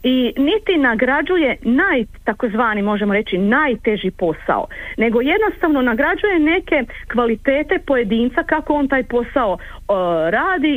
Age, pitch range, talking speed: 40-59, 220-295 Hz, 115 wpm